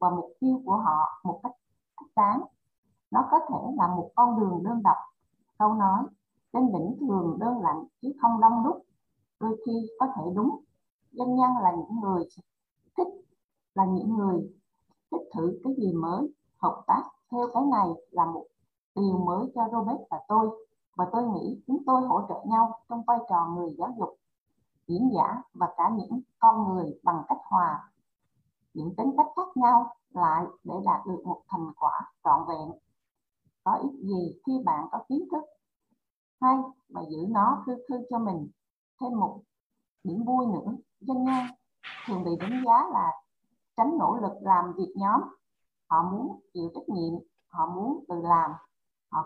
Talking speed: 175 wpm